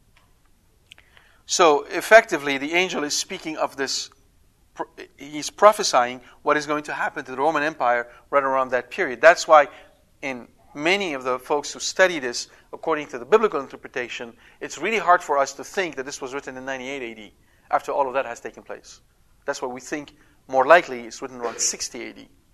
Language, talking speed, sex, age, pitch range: English, 185 wpm, male, 40-59, 125-155 Hz